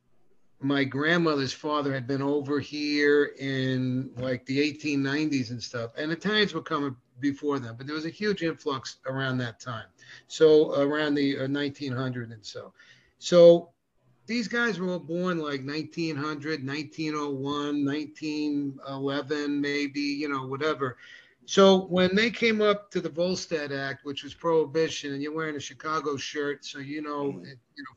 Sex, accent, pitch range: male, American, 135-160 Hz